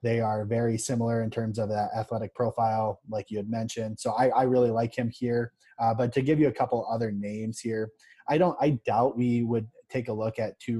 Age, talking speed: 20-39, 235 wpm